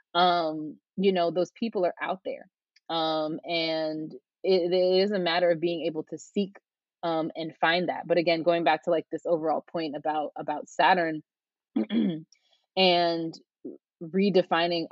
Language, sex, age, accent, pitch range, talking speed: English, female, 20-39, American, 160-190 Hz, 155 wpm